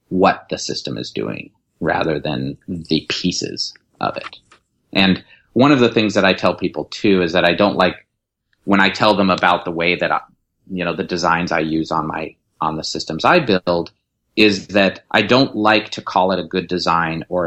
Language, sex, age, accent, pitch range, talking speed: English, male, 30-49, American, 85-100 Hz, 205 wpm